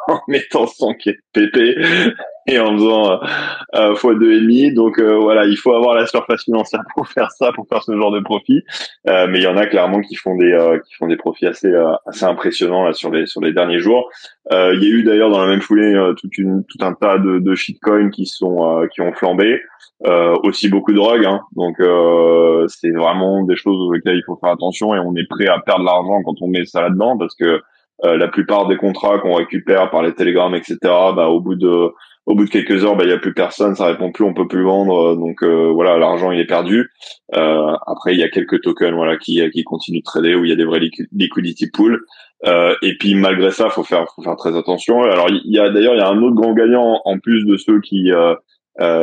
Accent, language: French, French